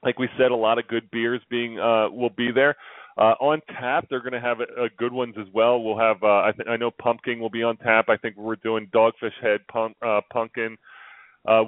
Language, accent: English, American